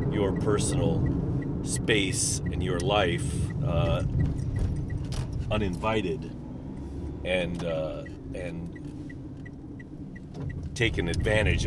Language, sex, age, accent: English, male, 40-59, American